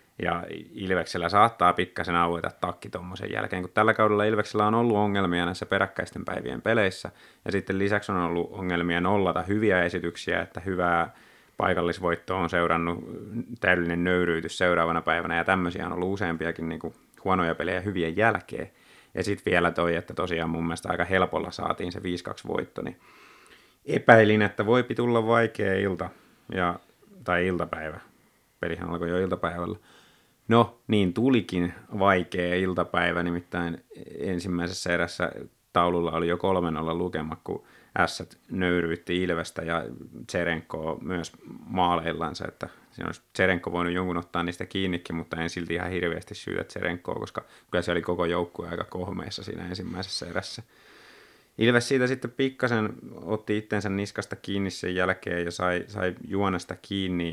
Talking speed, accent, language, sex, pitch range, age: 145 wpm, native, Finnish, male, 85-100 Hz, 30-49